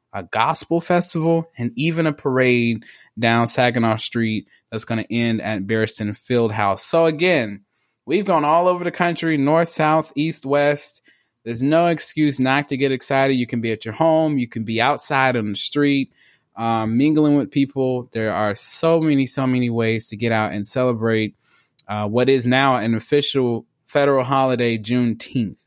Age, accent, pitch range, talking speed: 20-39, American, 115-145 Hz, 175 wpm